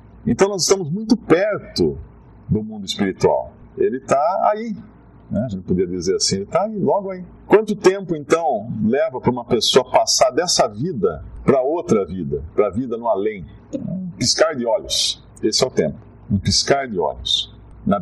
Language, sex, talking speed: Portuguese, male, 175 wpm